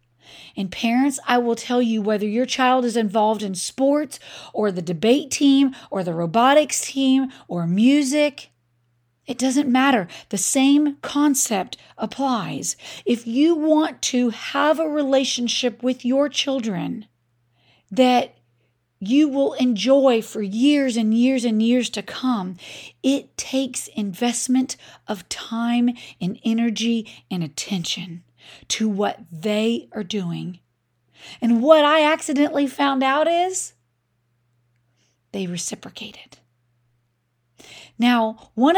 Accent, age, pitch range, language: American, 40-59, 175-260 Hz, English